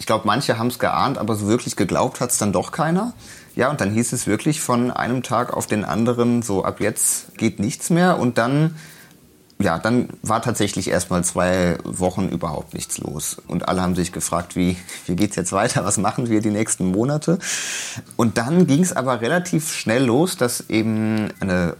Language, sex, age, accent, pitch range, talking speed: German, male, 30-49, German, 95-130 Hz, 200 wpm